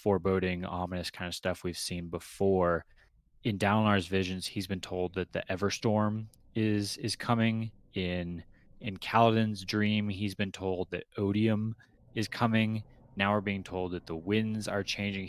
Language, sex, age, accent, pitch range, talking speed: English, male, 20-39, American, 90-105 Hz, 155 wpm